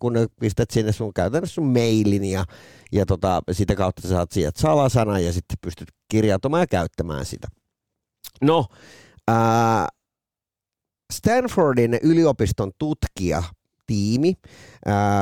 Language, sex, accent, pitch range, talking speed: Finnish, male, native, 95-140 Hz, 115 wpm